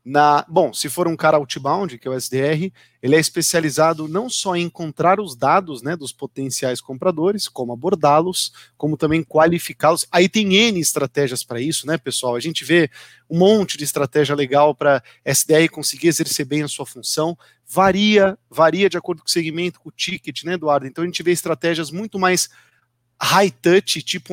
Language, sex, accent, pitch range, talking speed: Portuguese, male, Brazilian, 145-180 Hz, 185 wpm